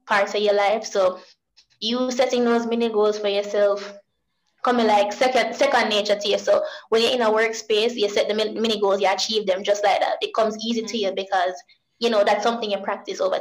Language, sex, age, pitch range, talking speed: English, female, 20-39, 210-255 Hz, 220 wpm